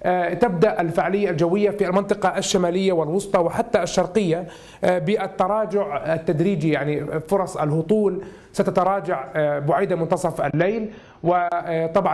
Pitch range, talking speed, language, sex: 165-200 Hz, 95 wpm, Arabic, male